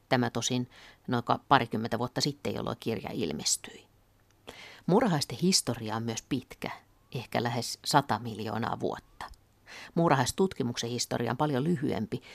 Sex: female